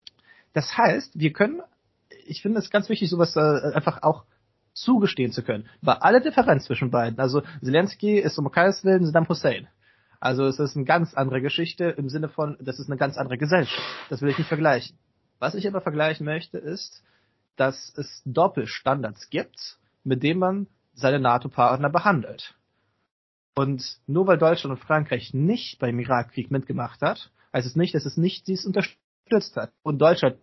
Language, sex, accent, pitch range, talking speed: German, male, German, 130-175 Hz, 175 wpm